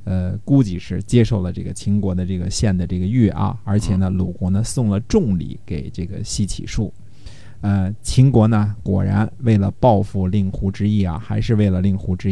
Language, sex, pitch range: Chinese, male, 95-110 Hz